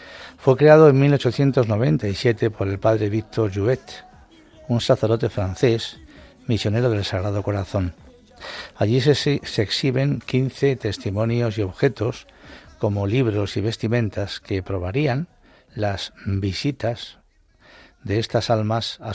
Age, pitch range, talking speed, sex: 60-79, 105-125 Hz, 115 wpm, male